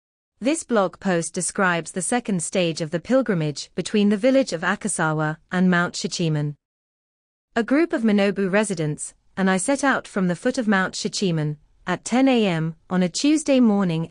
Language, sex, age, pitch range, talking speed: English, female, 30-49, 165-220 Hz, 170 wpm